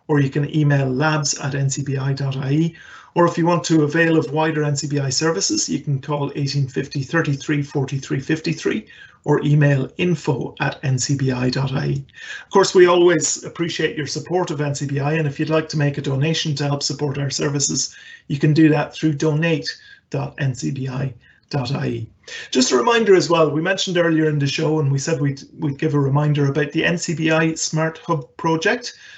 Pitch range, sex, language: 140-160 Hz, male, English